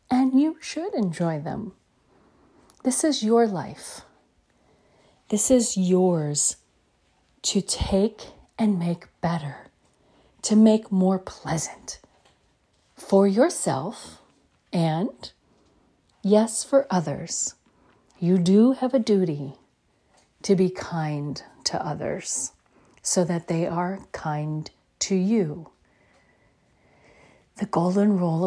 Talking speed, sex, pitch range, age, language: 100 wpm, female, 155-210 Hz, 40-59, English